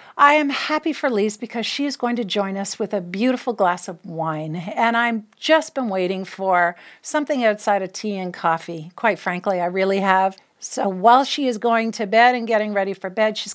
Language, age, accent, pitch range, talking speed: English, 50-69, American, 190-245 Hz, 215 wpm